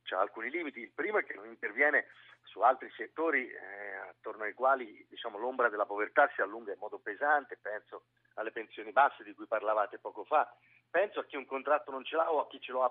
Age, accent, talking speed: 40-59, native, 220 wpm